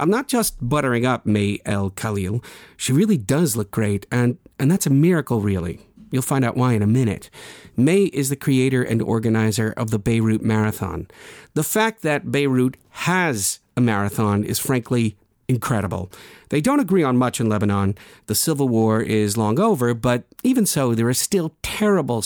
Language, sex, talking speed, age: English, male, 180 wpm, 50-69